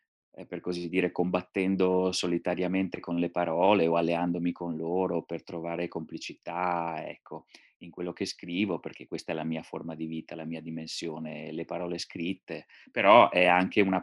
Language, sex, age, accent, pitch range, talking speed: Italian, male, 30-49, native, 85-100 Hz, 165 wpm